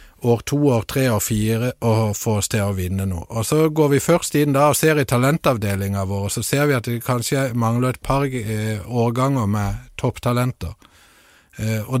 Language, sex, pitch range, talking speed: Danish, male, 105-135 Hz, 180 wpm